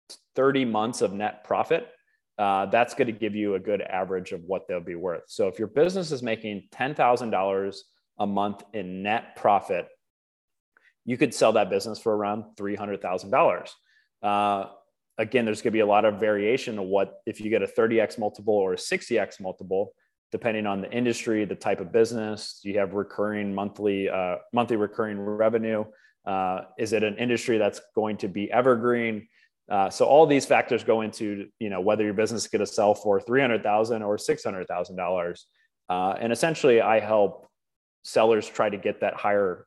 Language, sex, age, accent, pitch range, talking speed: English, male, 30-49, American, 100-120 Hz, 175 wpm